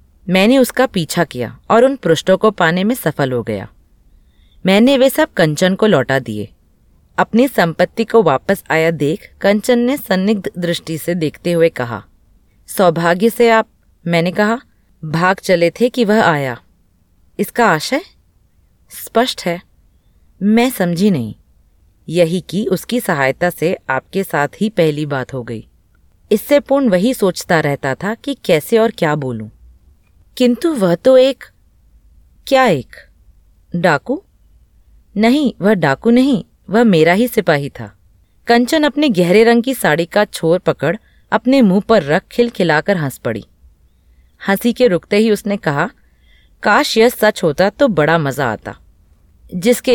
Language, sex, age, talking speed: Hindi, female, 20-39, 145 wpm